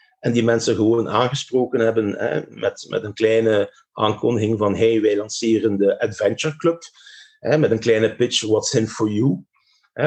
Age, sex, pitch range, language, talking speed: 50-69, male, 110-170 Hz, Dutch, 175 wpm